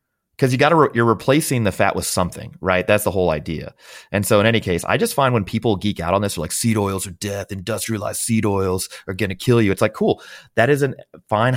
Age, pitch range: 30-49, 85-115 Hz